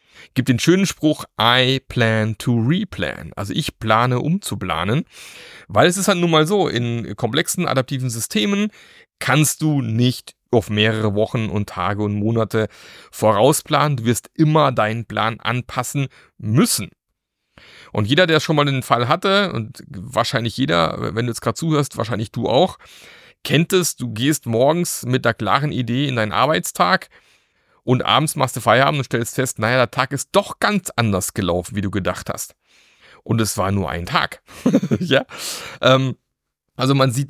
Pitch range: 110-155 Hz